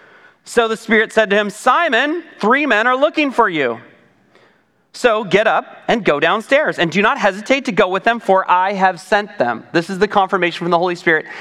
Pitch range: 175-225 Hz